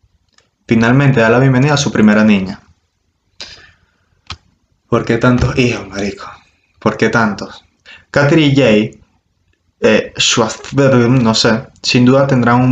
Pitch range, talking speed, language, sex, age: 100-135 Hz, 125 wpm, Spanish, male, 20-39